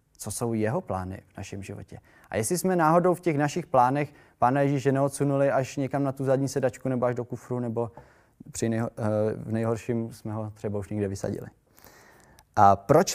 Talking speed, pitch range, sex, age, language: 185 wpm, 105-135 Hz, male, 20-39, Czech